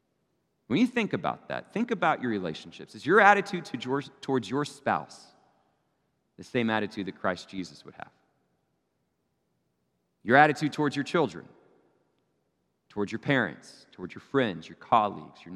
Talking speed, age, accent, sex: 145 wpm, 40-59, American, male